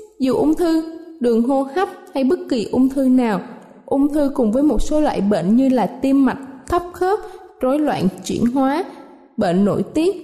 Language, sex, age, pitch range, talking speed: Vietnamese, female, 20-39, 220-300 Hz, 195 wpm